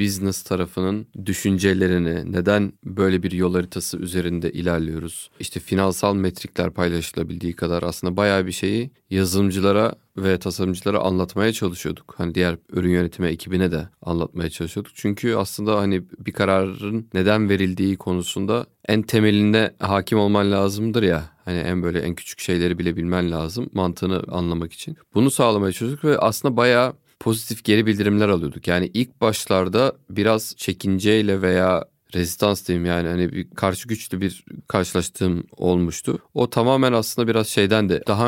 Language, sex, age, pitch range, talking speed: Turkish, male, 30-49, 90-105 Hz, 145 wpm